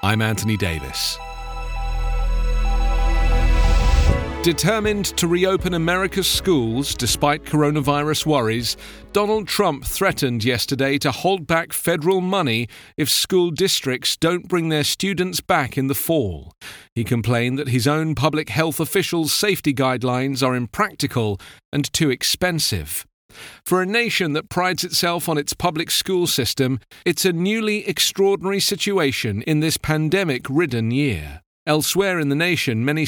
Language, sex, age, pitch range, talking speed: English, male, 40-59, 125-180 Hz, 130 wpm